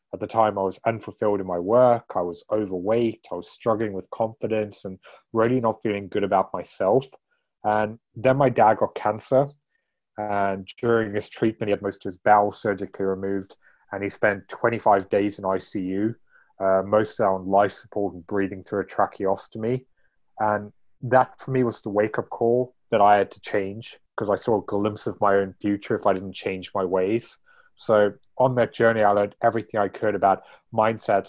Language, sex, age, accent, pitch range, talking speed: English, male, 20-39, British, 100-115 Hz, 190 wpm